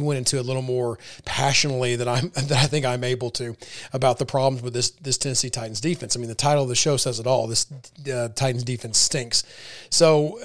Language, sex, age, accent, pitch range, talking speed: English, male, 30-49, American, 125-155 Hz, 225 wpm